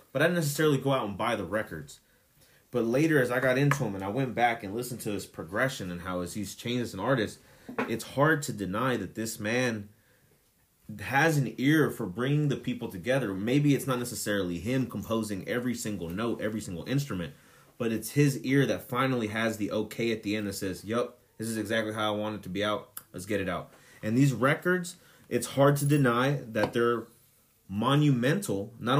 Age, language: 30-49, English